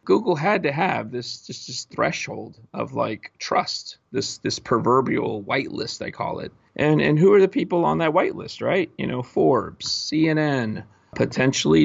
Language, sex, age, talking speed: English, male, 30-49, 170 wpm